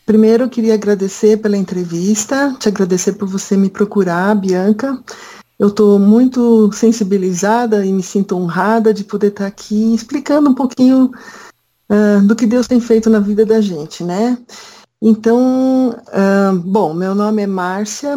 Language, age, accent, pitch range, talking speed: Portuguese, 50-69, Brazilian, 185-225 Hz, 155 wpm